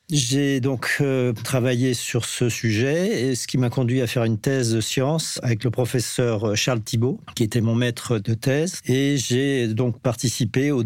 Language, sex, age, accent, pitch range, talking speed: French, male, 50-69, French, 115-130 Hz, 190 wpm